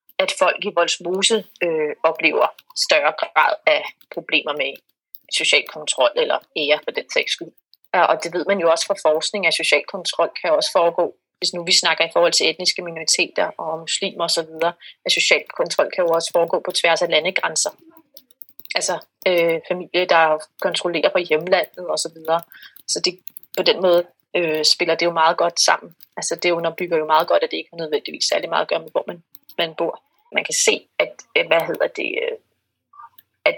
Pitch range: 160-210 Hz